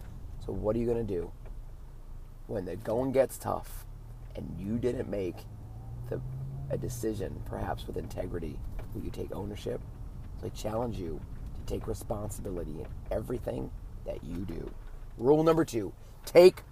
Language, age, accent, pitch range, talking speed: English, 30-49, American, 110-135 Hz, 145 wpm